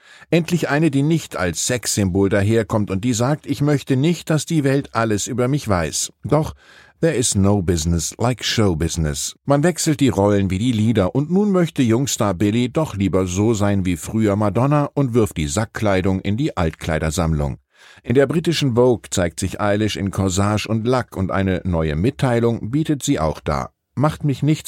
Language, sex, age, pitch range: German, male, 50-69, 95-130 Hz